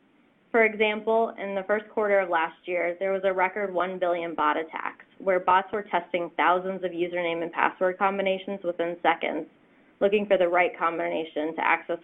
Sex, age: female, 20-39